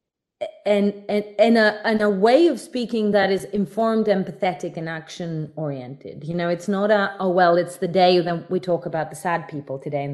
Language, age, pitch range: English, 30-49, 160-200 Hz